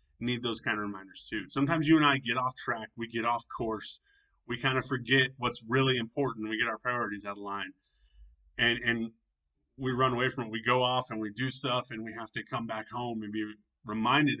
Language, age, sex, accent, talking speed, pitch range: English, 30-49, male, American, 230 wpm, 110-140 Hz